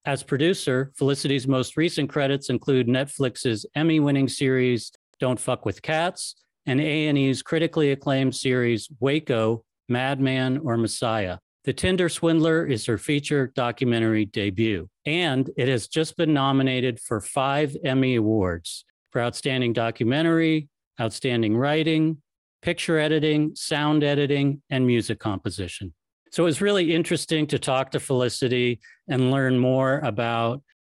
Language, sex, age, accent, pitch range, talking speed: English, male, 40-59, American, 120-150 Hz, 125 wpm